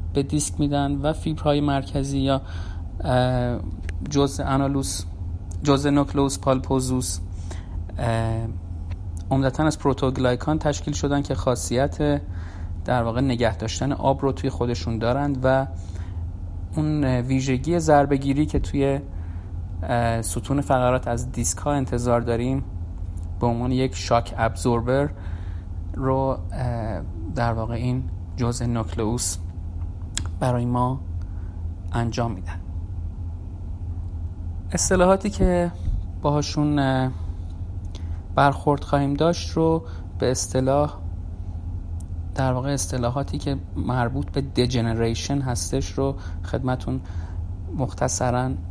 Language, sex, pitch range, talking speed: Persian, male, 85-130 Hz, 90 wpm